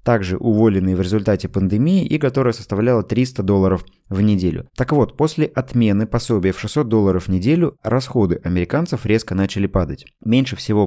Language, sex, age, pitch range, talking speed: Russian, male, 20-39, 95-130 Hz, 160 wpm